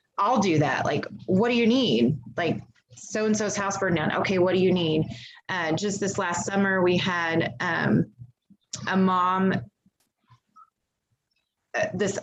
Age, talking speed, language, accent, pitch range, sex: 20-39, 145 wpm, English, American, 180-215 Hz, female